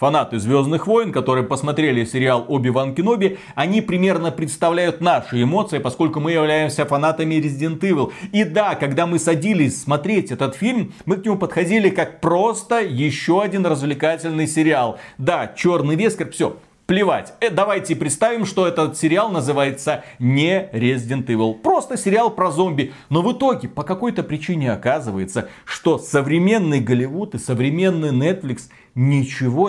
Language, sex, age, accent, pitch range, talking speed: Russian, male, 30-49, native, 140-170 Hz, 140 wpm